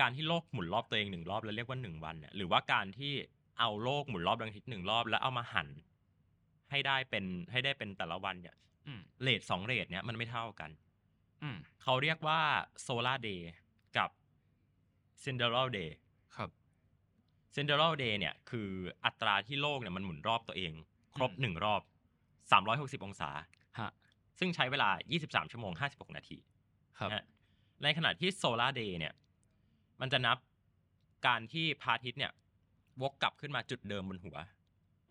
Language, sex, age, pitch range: Thai, male, 20-39, 95-135 Hz